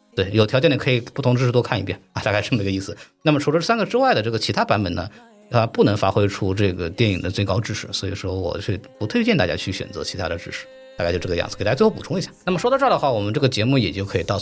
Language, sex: Chinese, male